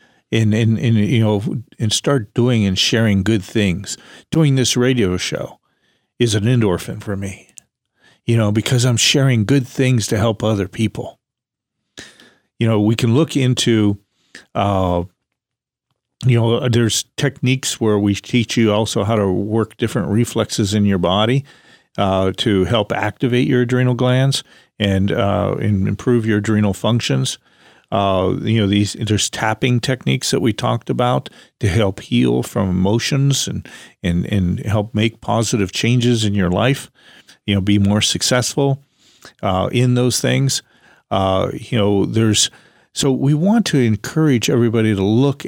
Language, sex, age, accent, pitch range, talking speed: English, male, 50-69, American, 100-125 Hz, 150 wpm